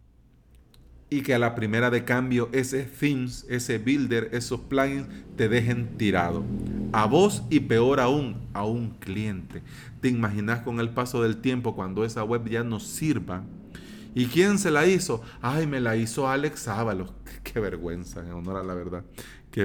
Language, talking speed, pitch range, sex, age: Spanish, 170 wpm, 115-155 Hz, male, 40-59